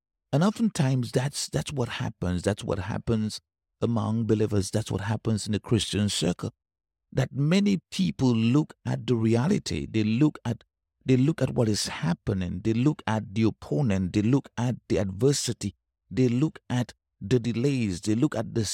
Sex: male